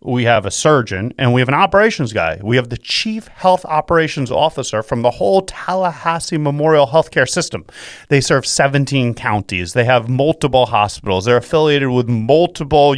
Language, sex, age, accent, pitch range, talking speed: English, male, 40-59, American, 120-170 Hz, 165 wpm